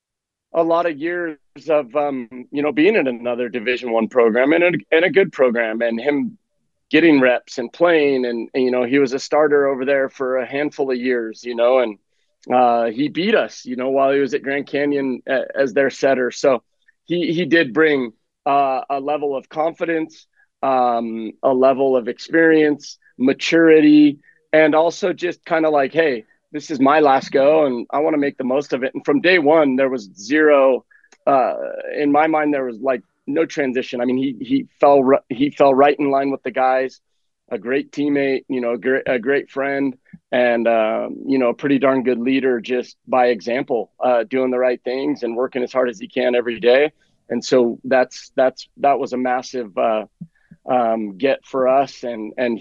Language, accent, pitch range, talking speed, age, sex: English, American, 125-150 Hz, 200 wpm, 30-49, male